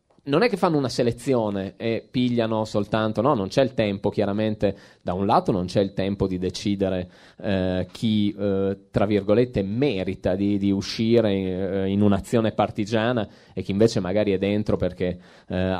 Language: Italian